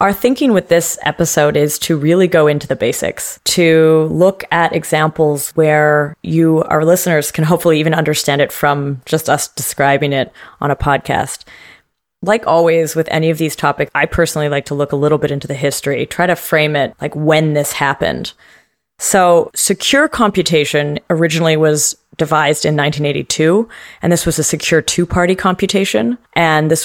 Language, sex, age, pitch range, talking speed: English, female, 30-49, 150-180 Hz, 170 wpm